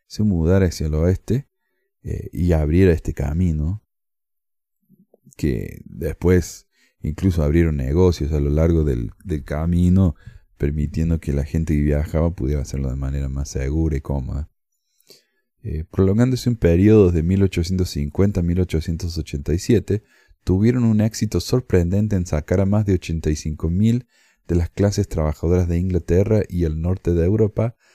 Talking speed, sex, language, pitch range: 135 wpm, male, Spanish, 80-100 Hz